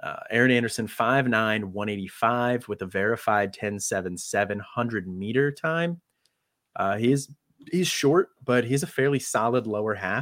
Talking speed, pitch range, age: 140 wpm, 95-125 Hz, 30-49